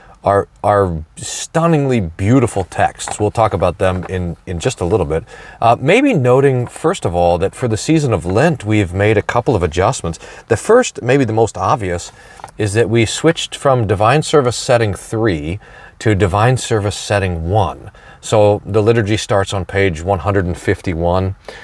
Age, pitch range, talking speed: 40-59, 100-130 Hz, 175 wpm